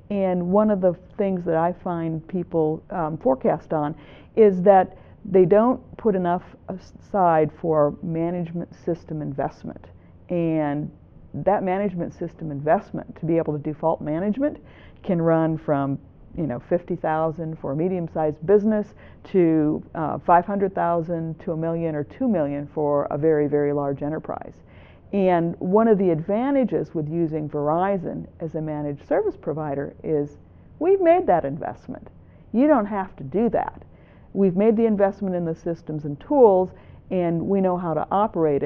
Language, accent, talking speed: English, American, 155 wpm